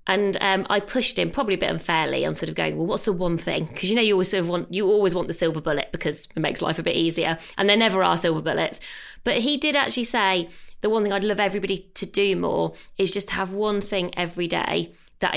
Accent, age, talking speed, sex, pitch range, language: British, 20-39, 260 wpm, female, 170-205 Hz, English